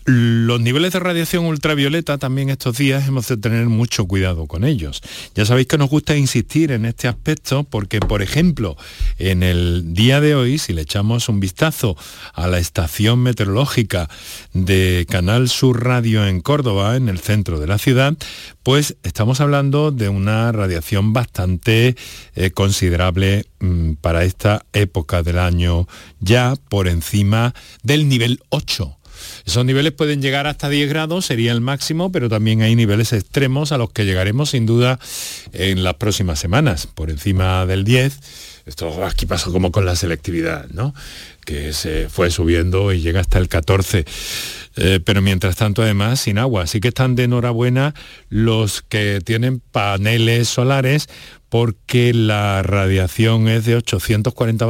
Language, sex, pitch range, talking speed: Spanish, male, 95-130 Hz, 155 wpm